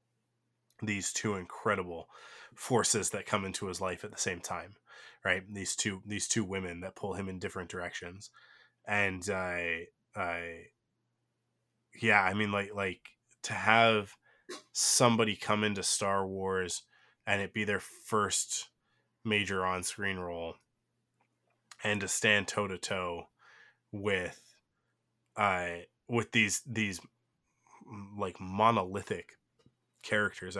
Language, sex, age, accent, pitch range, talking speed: English, male, 20-39, American, 95-110 Hz, 125 wpm